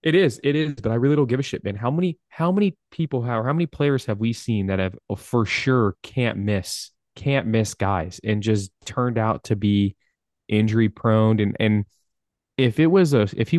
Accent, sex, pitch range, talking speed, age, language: American, male, 95-120 Hz, 215 wpm, 20-39, English